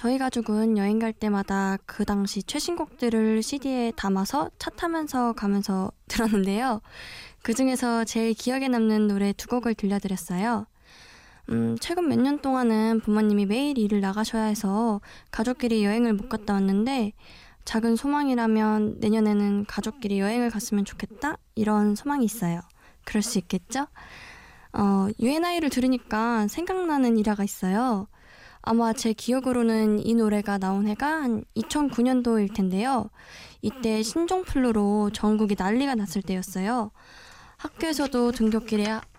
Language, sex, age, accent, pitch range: Korean, female, 20-39, native, 205-245 Hz